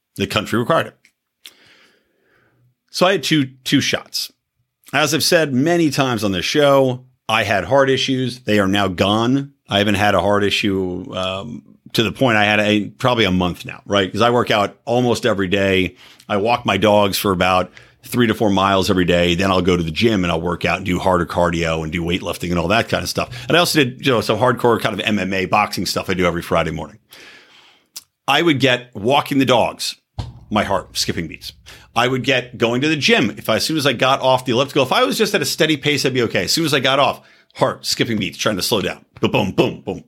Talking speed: 240 wpm